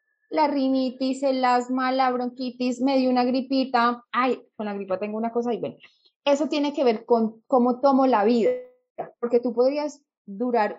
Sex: female